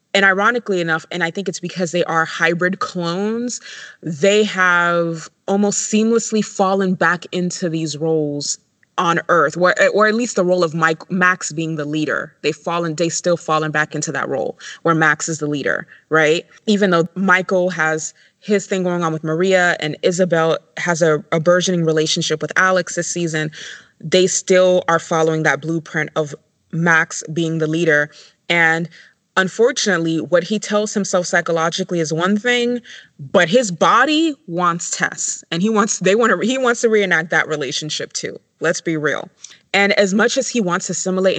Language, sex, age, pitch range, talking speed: English, female, 20-39, 165-195 Hz, 175 wpm